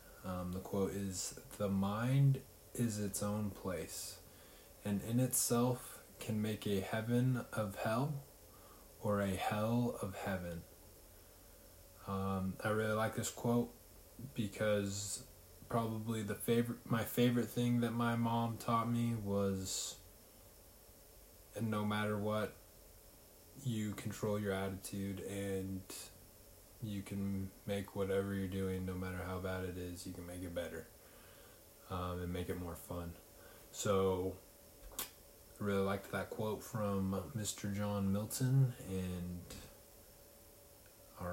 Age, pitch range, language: 20-39, 95-110 Hz, English